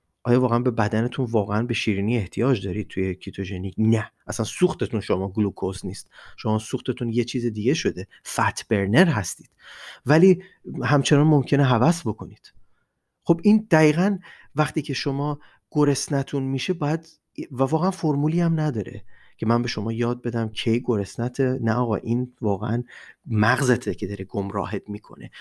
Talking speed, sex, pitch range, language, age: 145 wpm, male, 105-140 Hz, Persian, 30-49